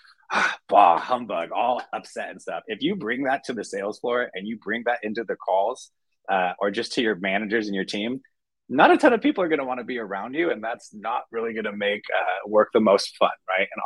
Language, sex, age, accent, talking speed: English, male, 20-39, American, 245 wpm